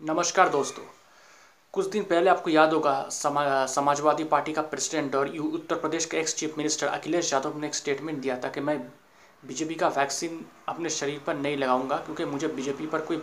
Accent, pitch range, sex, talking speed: native, 140-155 Hz, male, 185 wpm